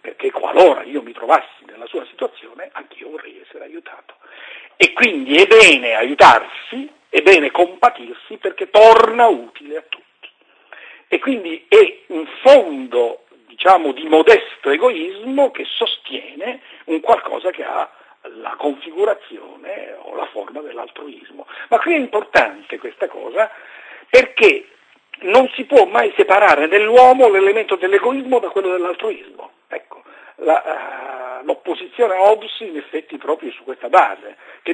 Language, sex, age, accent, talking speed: Italian, male, 60-79, native, 135 wpm